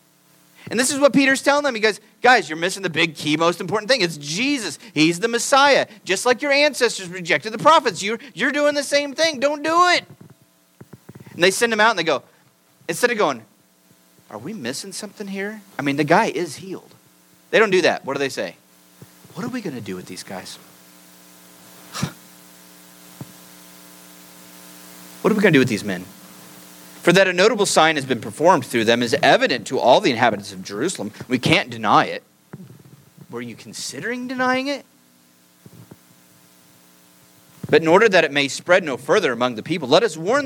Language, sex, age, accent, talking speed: English, male, 40-59, American, 190 wpm